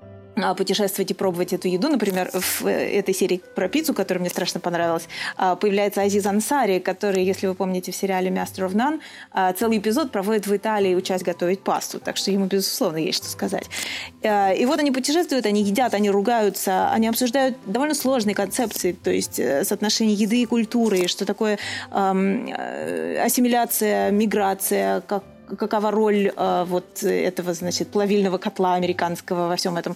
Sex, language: female, Russian